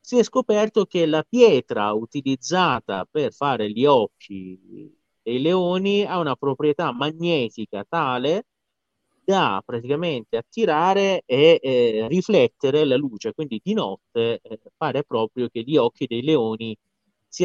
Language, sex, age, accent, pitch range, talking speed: Italian, male, 30-49, native, 110-175 Hz, 130 wpm